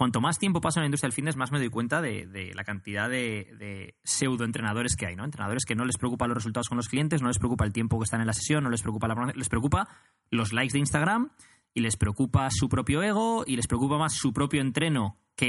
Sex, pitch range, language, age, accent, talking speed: male, 115-145 Hz, Spanish, 20-39, Spanish, 260 wpm